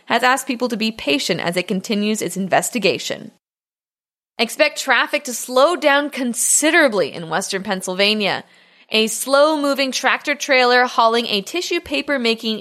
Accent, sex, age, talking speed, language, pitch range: American, female, 20-39, 125 wpm, English, 205-275 Hz